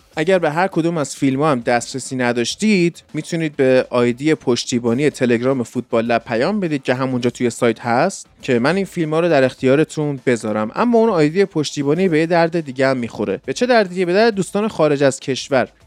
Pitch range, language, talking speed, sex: 125-165 Hz, Persian, 185 wpm, male